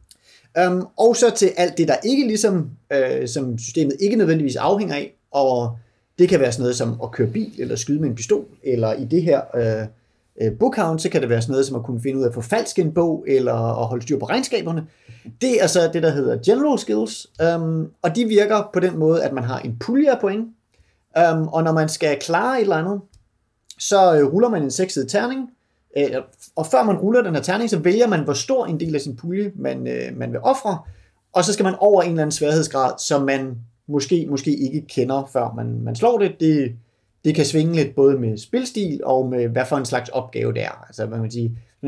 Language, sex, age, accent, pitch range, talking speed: Danish, male, 30-49, native, 120-175 Hz, 220 wpm